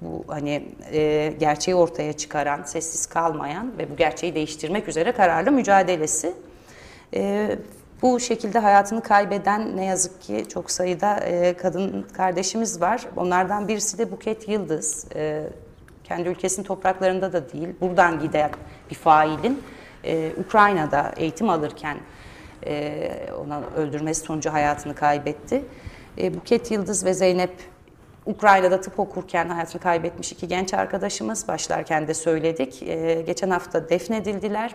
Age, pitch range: 30-49, 160-205 Hz